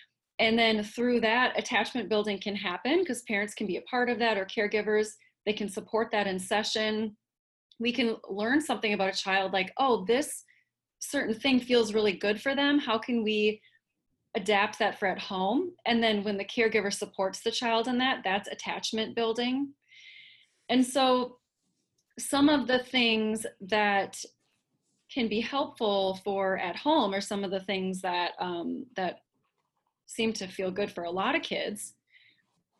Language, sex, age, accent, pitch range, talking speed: English, female, 30-49, American, 205-250 Hz, 170 wpm